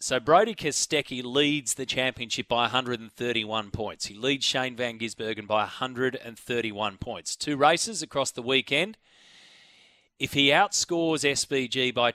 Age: 30-49